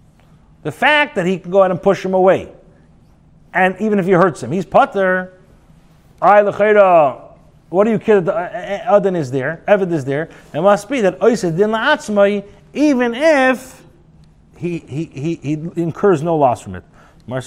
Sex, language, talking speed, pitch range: male, English, 155 wpm, 145-200 Hz